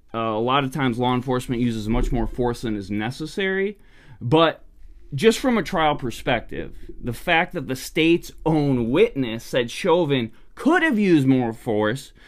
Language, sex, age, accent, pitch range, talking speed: English, male, 20-39, American, 115-150 Hz, 165 wpm